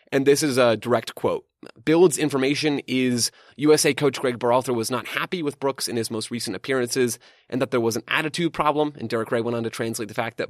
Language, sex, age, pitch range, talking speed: English, male, 30-49, 115-145 Hz, 230 wpm